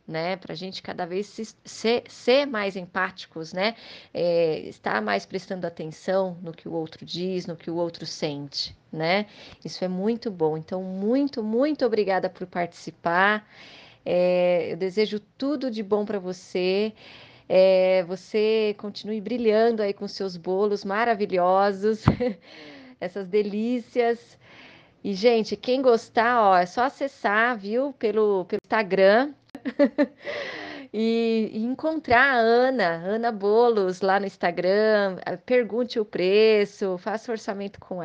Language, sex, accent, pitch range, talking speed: Portuguese, female, Brazilian, 185-230 Hz, 120 wpm